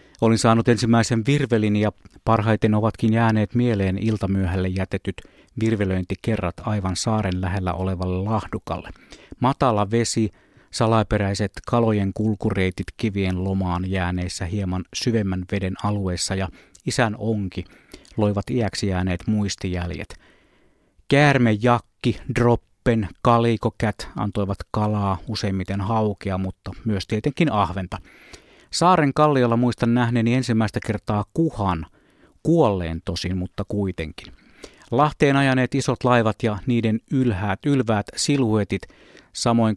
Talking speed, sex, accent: 100 wpm, male, native